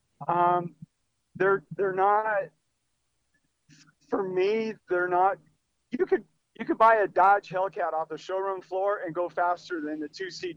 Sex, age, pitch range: male, 40-59, 160-195 Hz